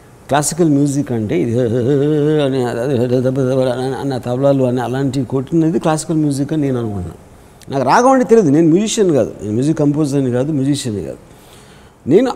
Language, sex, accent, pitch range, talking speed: Telugu, male, native, 130-165 Hz, 135 wpm